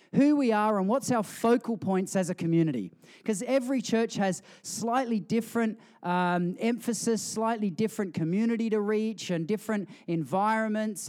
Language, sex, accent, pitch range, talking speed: English, male, Australian, 180-220 Hz, 145 wpm